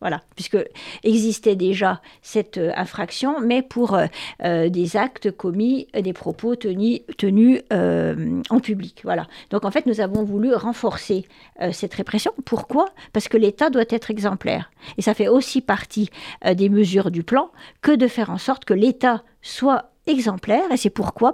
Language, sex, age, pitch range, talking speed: French, female, 50-69, 190-235 Hz, 165 wpm